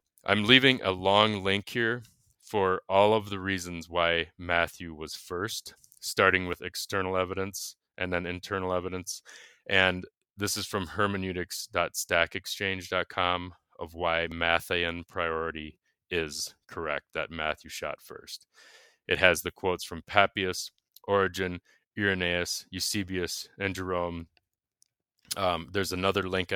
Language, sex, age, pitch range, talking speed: English, male, 30-49, 85-95 Hz, 120 wpm